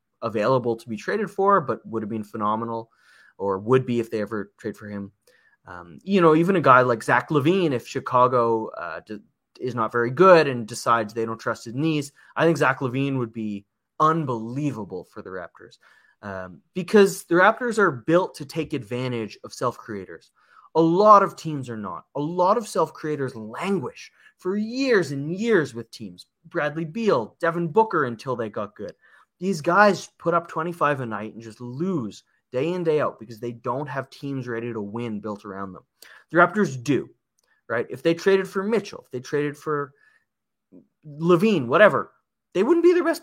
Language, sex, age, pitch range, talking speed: English, male, 20-39, 115-170 Hz, 185 wpm